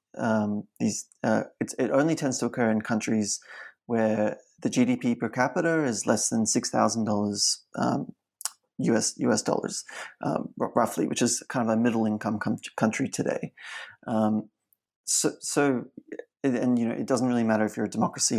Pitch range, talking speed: 110-130 Hz, 170 wpm